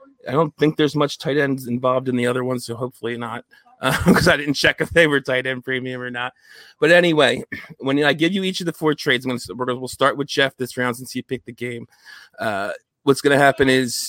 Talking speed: 255 wpm